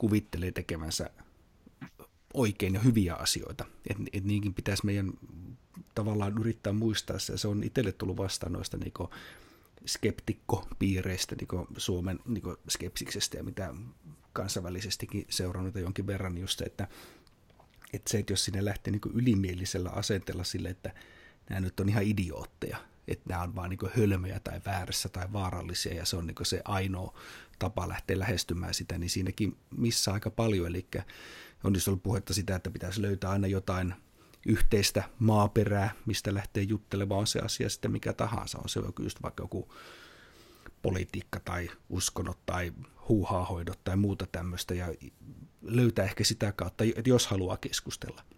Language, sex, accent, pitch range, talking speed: Finnish, male, native, 90-105 Hz, 150 wpm